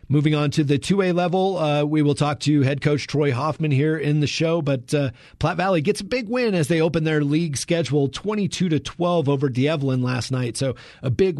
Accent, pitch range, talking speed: American, 135-160 Hz, 240 wpm